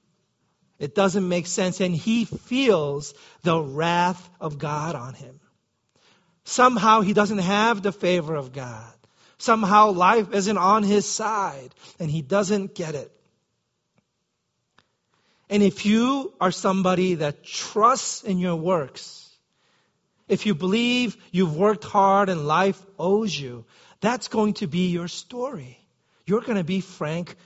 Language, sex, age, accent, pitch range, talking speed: English, male, 40-59, American, 170-210 Hz, 140 wpm